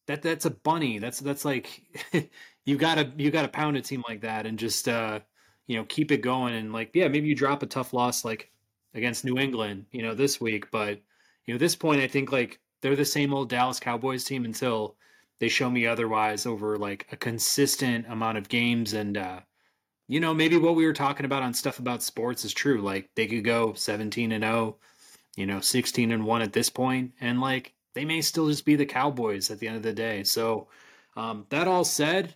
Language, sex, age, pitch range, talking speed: English, male, 30-49, 115-140 Hz, 225 wpm